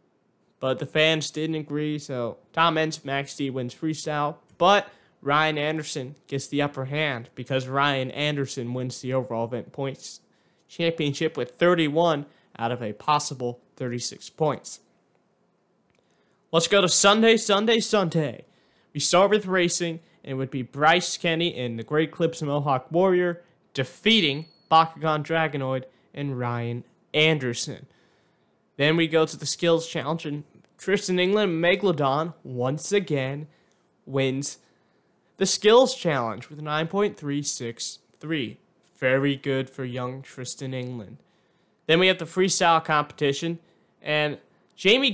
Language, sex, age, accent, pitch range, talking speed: English, male, 20-39, American, 135-175 Hz, 130 wpm